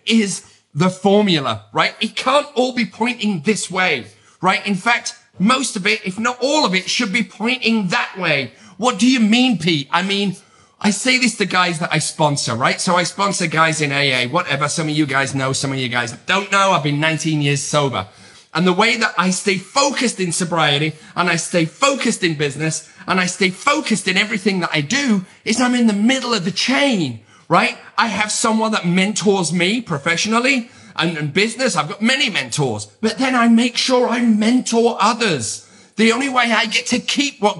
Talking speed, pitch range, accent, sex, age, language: 205 wpm, 170-235 Hz, British, male, 30-49, English